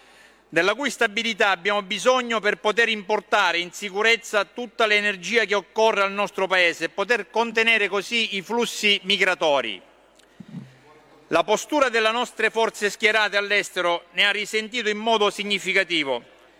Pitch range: 195-230 Hz